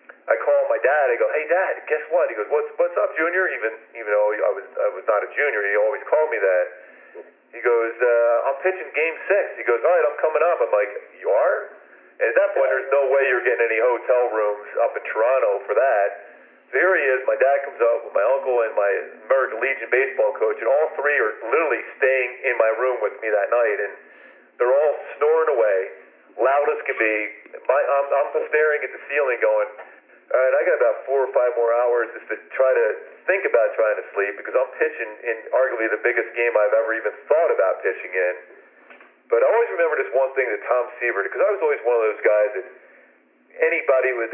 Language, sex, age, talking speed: English, male, 40-59, 230 wpm